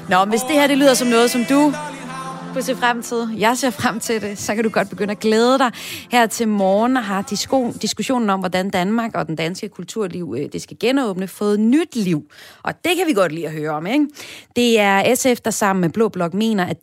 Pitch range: 165-235 Hz